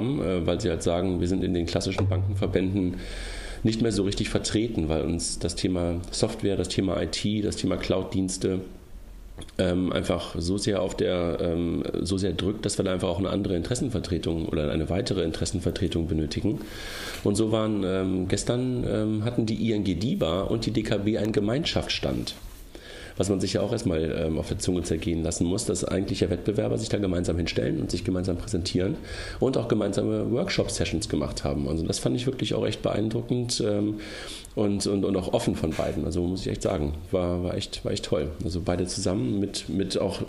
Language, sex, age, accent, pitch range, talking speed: German, male, 40-59, German, 85-105 Hz, 185 wpm